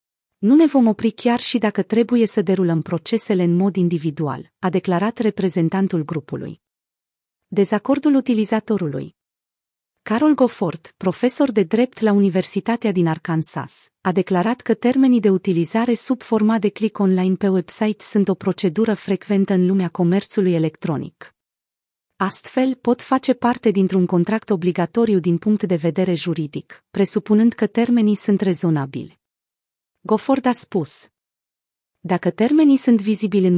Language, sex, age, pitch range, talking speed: Romanian, female, 30-49, 180-225 Hz, 135 wpm